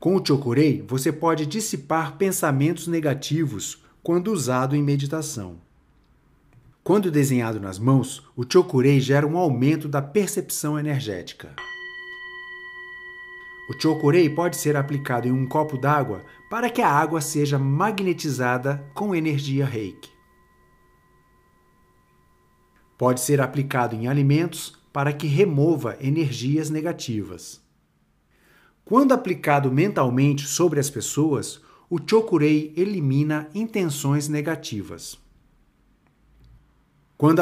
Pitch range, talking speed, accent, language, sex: 135-180 Hz, 105 wpm, Brazilian, Portuguese, male